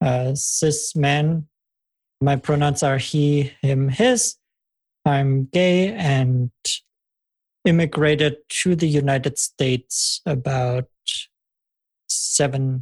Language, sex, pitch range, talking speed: English, male, 140-175 Hz, 85 wpm